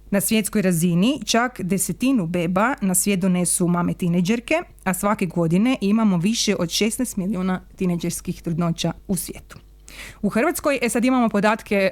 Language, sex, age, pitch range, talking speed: Croatian, female, 30-49, 180-215 Hz, 145 wpm